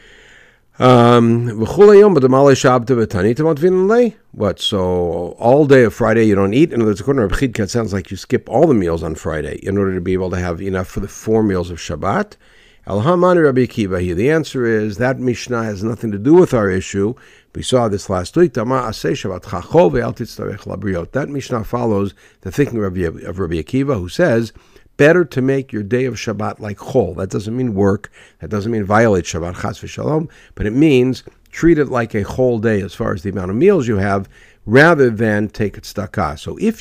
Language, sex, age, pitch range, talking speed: English, male, 60-79, 100-130 Hz, 180 wpm